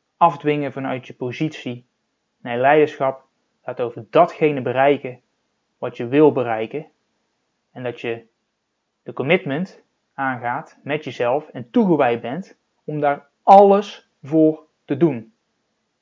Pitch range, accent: 130-175 Hz, Dutch